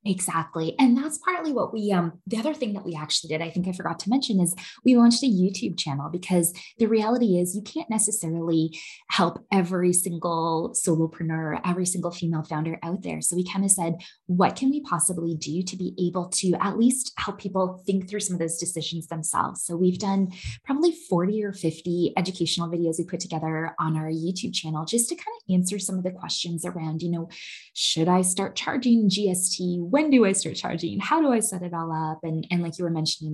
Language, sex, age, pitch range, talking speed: English, female, 20-39, 165-195 Hz, 215 wpm